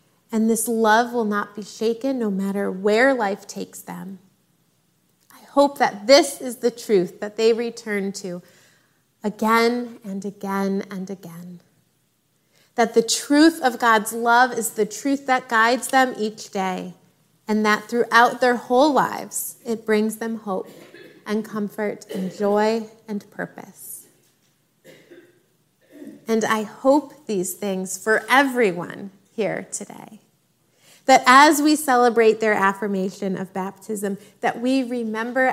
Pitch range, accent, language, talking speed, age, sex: 195-245 Hz, American, English, 135 wpm, 30-49, female